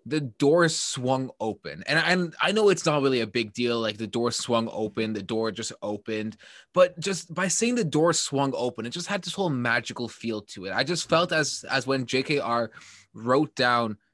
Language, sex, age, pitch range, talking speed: English, male, 20-39, 115-155 Hz, 210 wpm